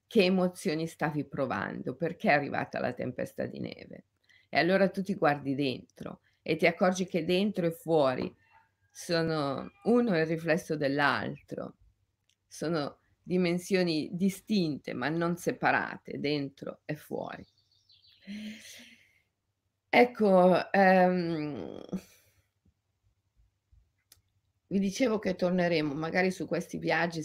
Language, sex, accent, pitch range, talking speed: Italian, female, native, 135-180 Hz, 105 wpm